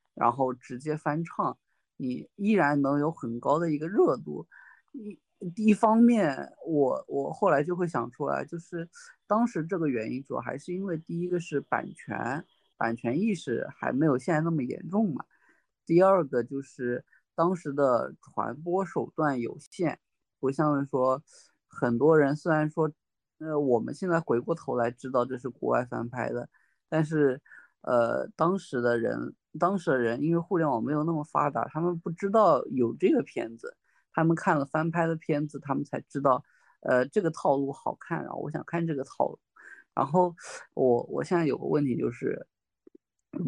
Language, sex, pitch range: Chinese, male, 135-175 Hz